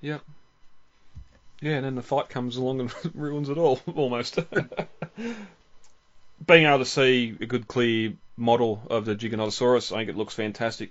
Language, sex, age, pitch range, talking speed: English, male, 20-39, 105-125 Hz, 160 wpm